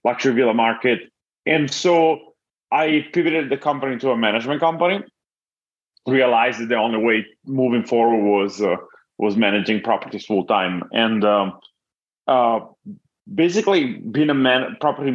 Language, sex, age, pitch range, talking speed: English, male, 30-49, 110-140 Hz, 135 wpm